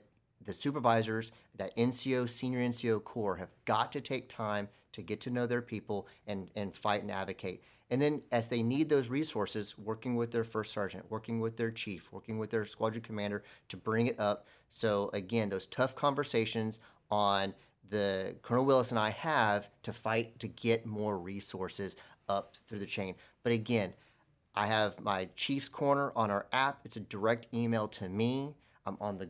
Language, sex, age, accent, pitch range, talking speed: English, male, 40-59, American, 100-120 Hz, 180 wpm